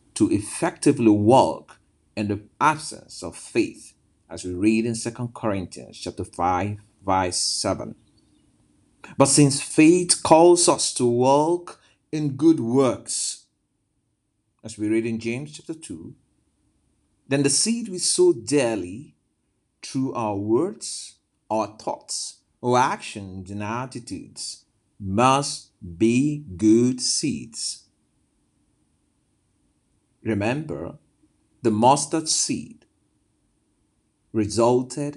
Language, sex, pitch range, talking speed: English, male, 105-140 Hz, 100 wpm